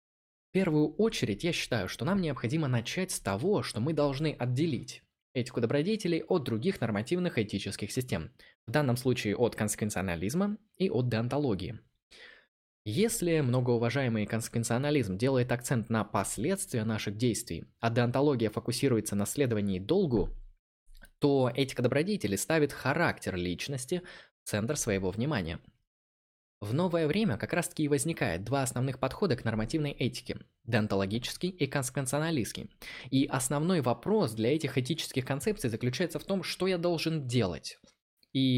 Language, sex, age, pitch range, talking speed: Russian, male, 20-39, 115-160 Hz, 135 wpm